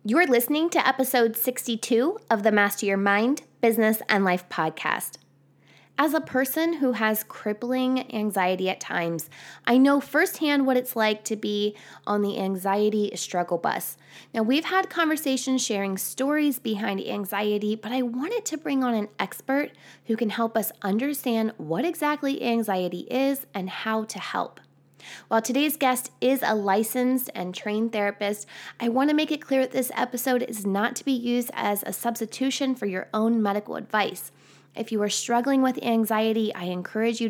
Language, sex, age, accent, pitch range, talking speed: English, female, 20-39, American, 200-260 Hz, 170 wpm